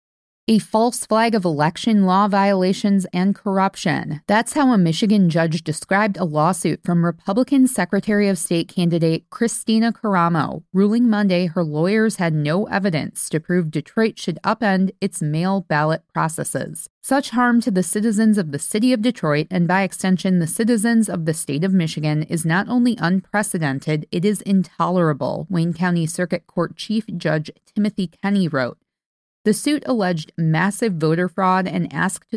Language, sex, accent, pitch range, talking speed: English, female, American, 165-210 Hz, 160 wpm